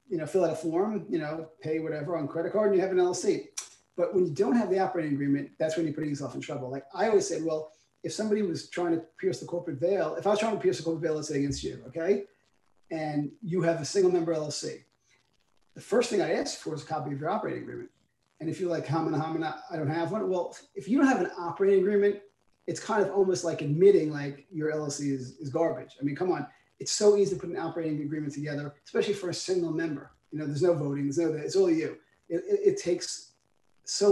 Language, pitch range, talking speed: English, 155-200 Hz, 255 wpm